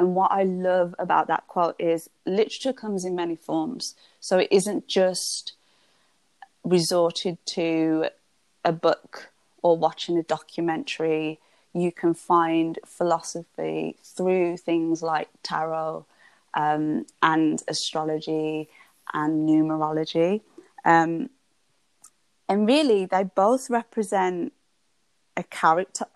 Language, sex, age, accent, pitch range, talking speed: English, female, 20-39, British, 165-215 Hz, 105 wpm